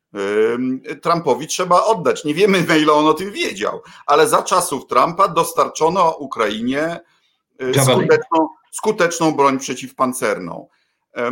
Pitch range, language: 135-195 Hz, Polish